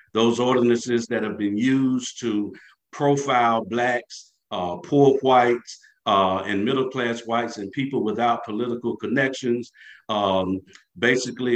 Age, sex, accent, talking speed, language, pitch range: 50-69, male, American, 110 wpm, English, 115-135 Hz